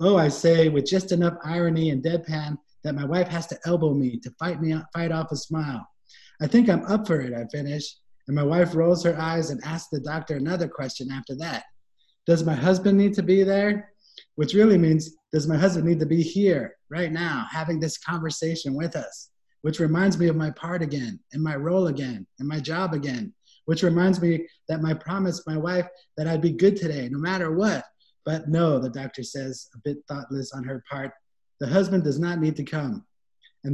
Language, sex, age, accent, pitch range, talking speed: English, male, 30-49, American, 140-170 Hz, 210 wpm